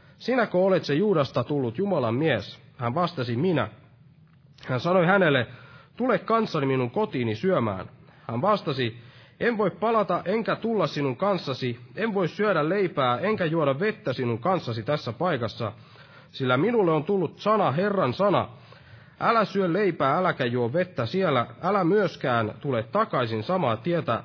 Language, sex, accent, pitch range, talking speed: Finnish, male, native, 125-185 Hz, 145 wpm